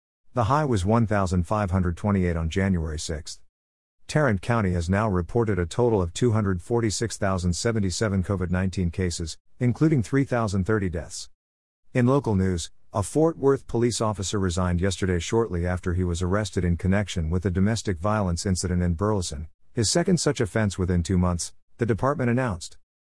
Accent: American